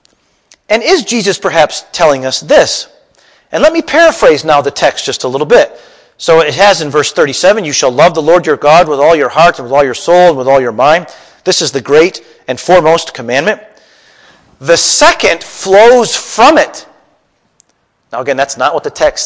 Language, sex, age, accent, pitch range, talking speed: English, male, 40-59, American, 150-240 Hz, 200 wpm